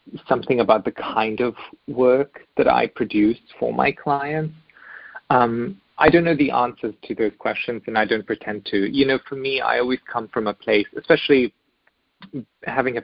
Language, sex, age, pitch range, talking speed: English, male, 30-49, 105-135 Hz, 175 wpm